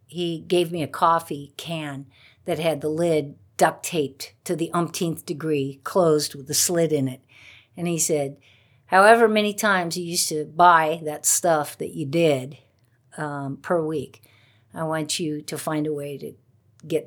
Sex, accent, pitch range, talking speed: female, American, 130-175 Hz, 170 wpm